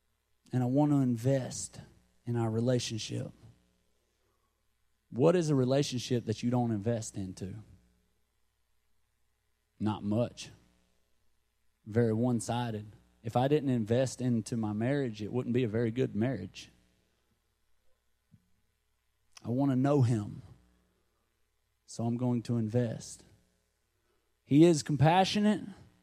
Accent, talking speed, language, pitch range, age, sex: American, 115 wpm, English, 105-140 Hz, 30-49, male